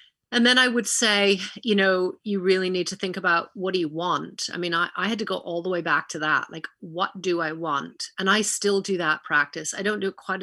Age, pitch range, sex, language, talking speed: 30-49, 170-195 Hz, female, English, 265 wpm